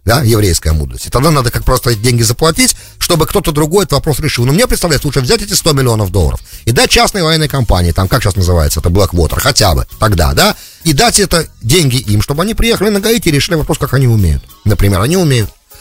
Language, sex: English, male